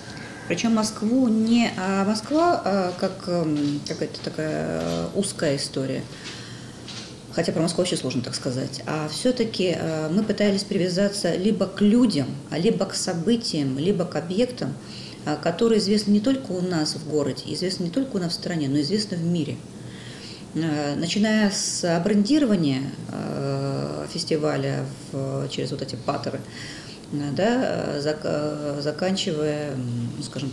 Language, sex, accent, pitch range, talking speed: Russian, female, native, 140-190 Hz, 120 wpm